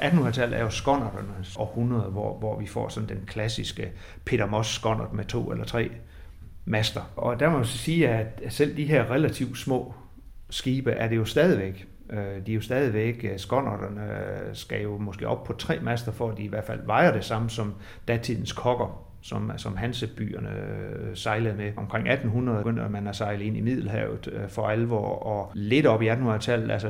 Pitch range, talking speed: 100-120 Hz, 185 wpm